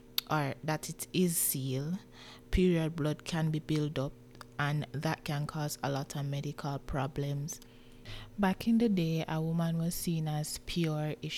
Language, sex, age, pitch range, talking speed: English, female, 20-39, 140-155 Hz, 165 wpm